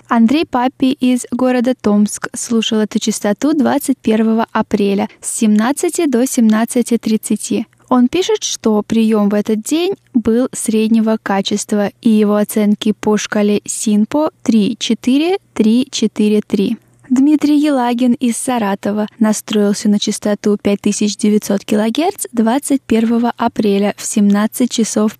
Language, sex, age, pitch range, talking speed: Russian, female, 10-29, 215-255 Hz, 105 wpm